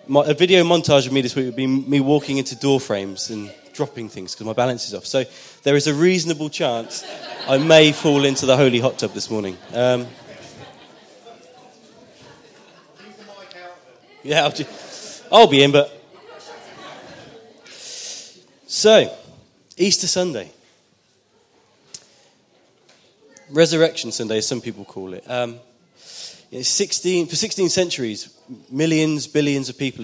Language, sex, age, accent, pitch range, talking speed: English, male, 20-39, British, 120-160 Hz, 130 wpm